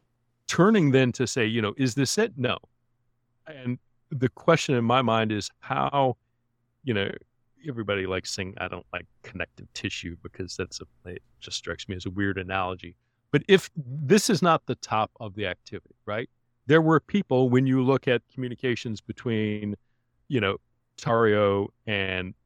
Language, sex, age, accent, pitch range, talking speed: English, male, 40-59, American, 105-125 Hz, 170 wpm